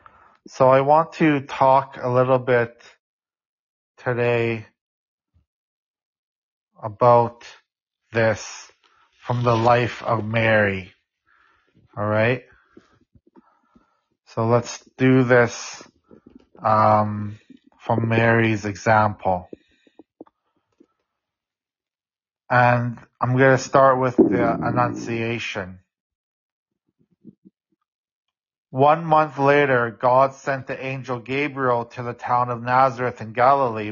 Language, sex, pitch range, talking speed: English, male, 115-135 Hz, 85 wpm